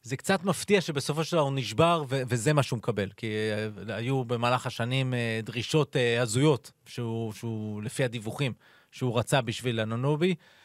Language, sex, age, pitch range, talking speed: Hebrew, male, 30-49, 120-150 Hz, 170 wpm